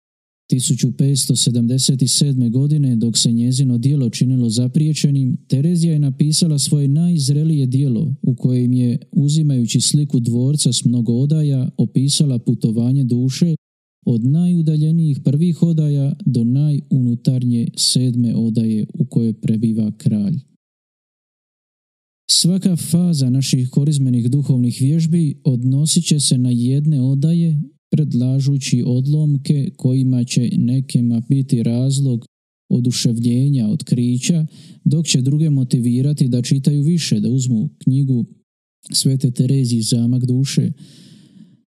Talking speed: 105 wpm